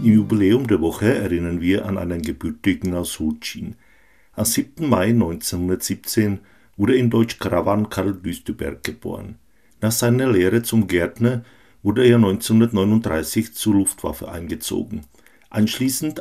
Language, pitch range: Czech, 95-115 Hz